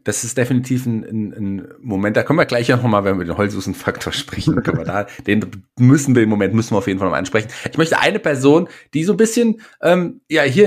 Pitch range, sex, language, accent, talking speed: 100-130 Hz, male, German, German, 255 wpm